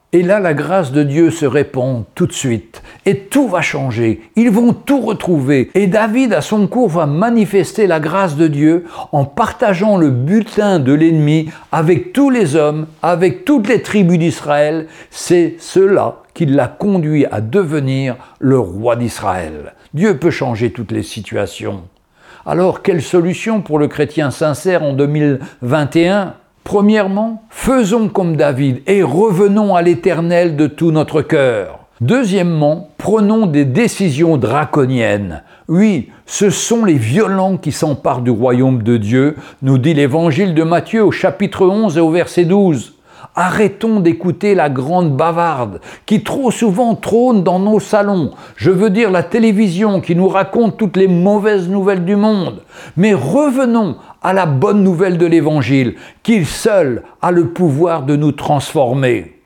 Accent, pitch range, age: French, 145-205 Hz, 60-79